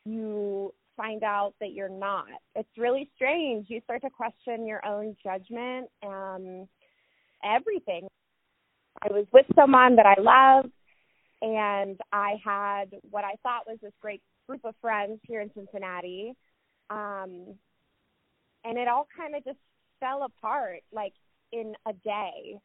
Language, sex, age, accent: English, female, 20-39, American